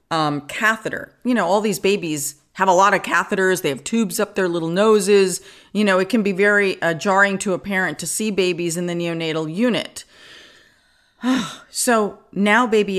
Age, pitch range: 40-59, 160-215 Hz